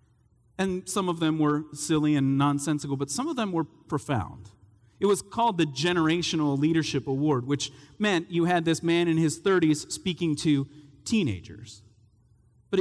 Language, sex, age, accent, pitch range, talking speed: English, male, 30-49, American, 115-170 Hz, 160 wpm